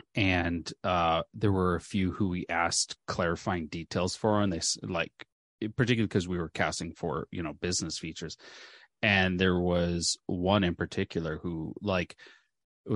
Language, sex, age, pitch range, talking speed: English, male, 30-49, 85-105 Hz, 160 wpm